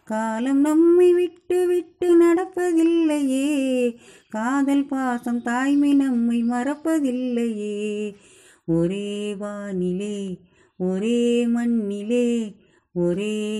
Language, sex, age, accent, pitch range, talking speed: Tamil, female, 30-49, native, 225-310 Hz, 65 wpm